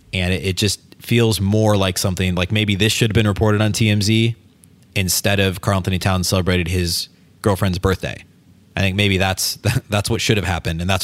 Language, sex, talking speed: English, male, 195 wpm